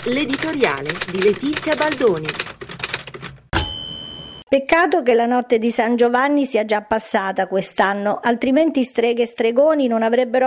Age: 50-69